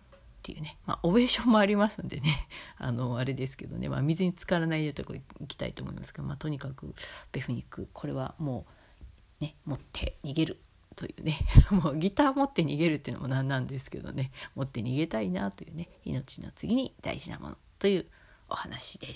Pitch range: 140-195 Hz